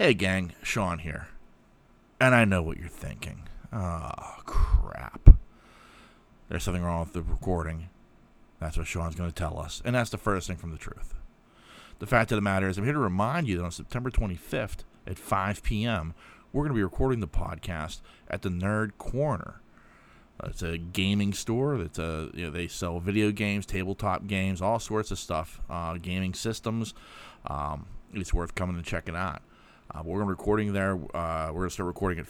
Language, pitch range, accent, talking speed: English, 85-105 Hz, American, 190 wpm